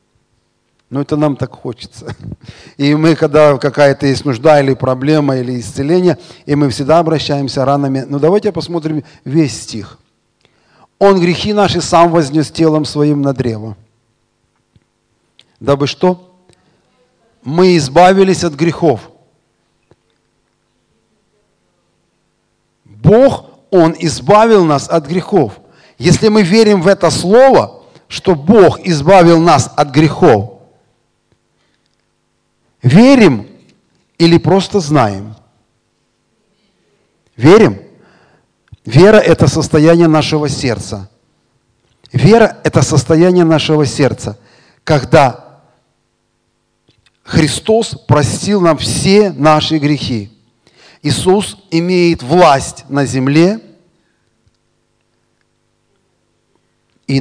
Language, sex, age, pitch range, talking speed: Russian, male, 40-59, 120-165 Hz, 90 wpm